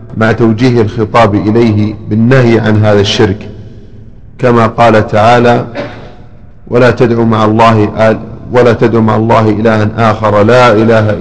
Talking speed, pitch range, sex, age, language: 125 wpm, 105-115 Hz, male, 40-59, Arabic